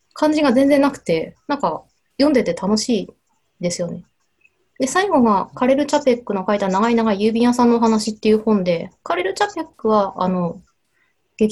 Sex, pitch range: female, 195-290 Hz